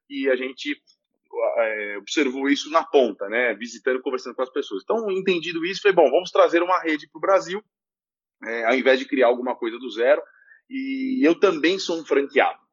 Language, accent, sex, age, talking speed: Portuguese, Brazilian, male, 20-39, 195 wpm